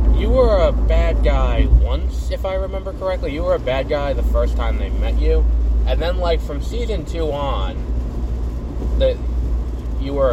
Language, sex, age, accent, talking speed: English, male, 20-39, American, 180 wpm